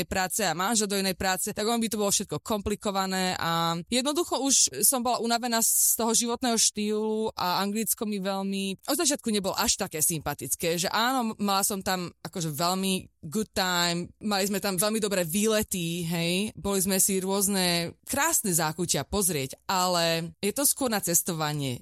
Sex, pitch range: female, 165-210 Hz